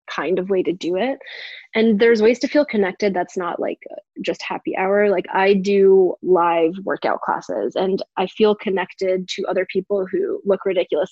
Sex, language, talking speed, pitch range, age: female, English, 185 wpm, 185-230 Hz, 20-39